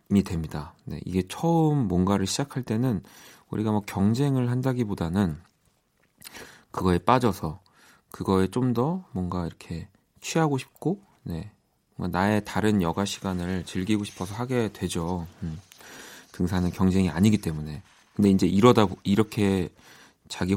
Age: 40-59